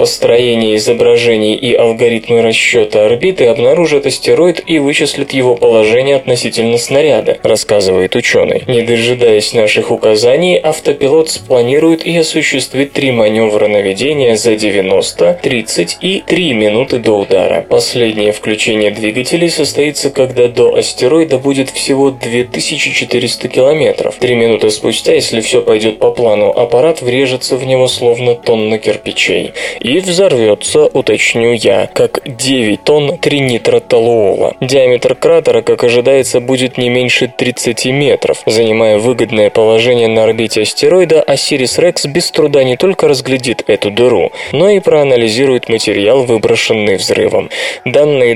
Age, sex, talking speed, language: 20-39, male, 125 wpm, Russian